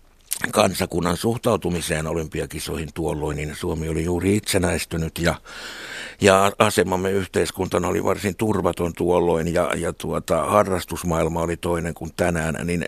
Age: 60-79